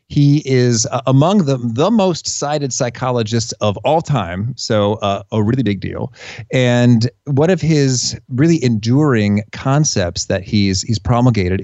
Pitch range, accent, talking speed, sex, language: 110-145 Hz, American, 155 wpm, male, English